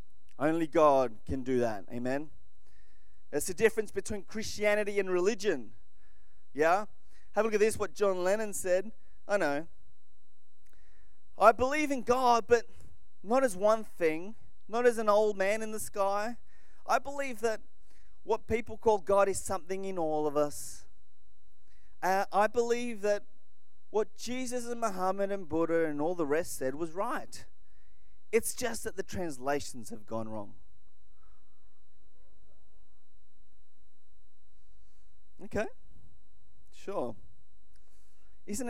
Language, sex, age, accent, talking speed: English, male, 30-49, Australian, 130 wpm